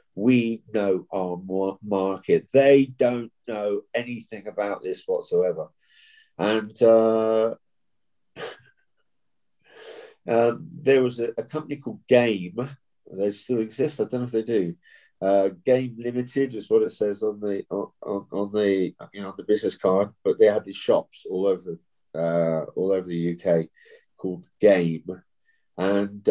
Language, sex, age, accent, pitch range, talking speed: English, male, 50-69, British, 95-135 Hz, 145 wpm